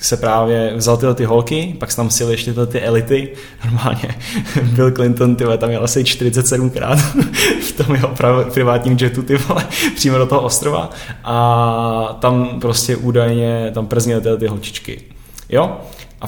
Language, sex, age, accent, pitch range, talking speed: Czech, male, 10-29, native, 115-130 Hz, 155 wpm